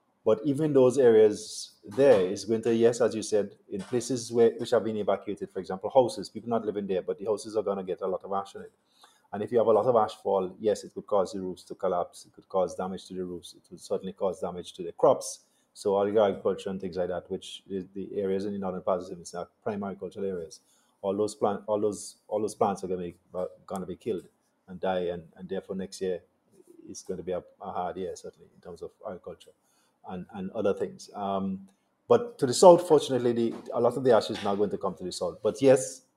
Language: English